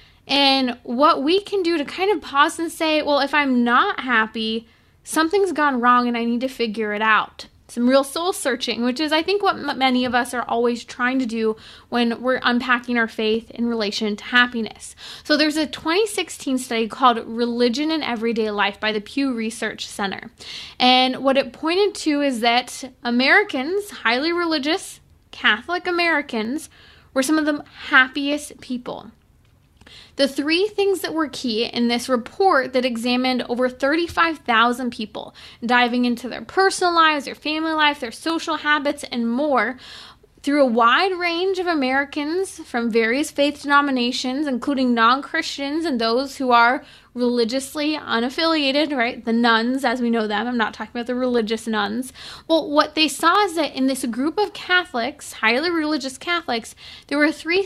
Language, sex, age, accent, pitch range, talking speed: English, female, 20-39, American, 240-310 Hz, 170 wpm